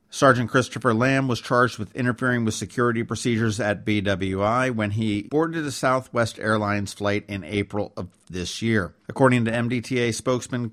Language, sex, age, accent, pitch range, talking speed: English, male, 50-69, American, 105-130 Hz, 155 wpm